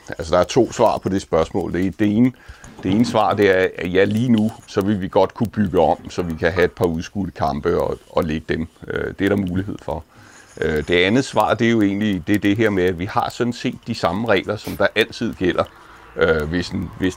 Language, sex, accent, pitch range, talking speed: Danish, male, native, 95-110 Hz, 235 wpm